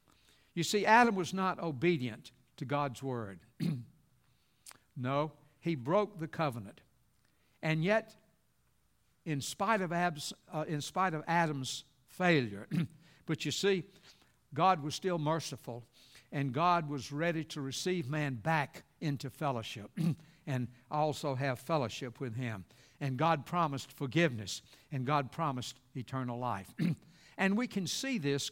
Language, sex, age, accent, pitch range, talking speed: English, male, 60-79, American, 140-190 Hz, 125 wpm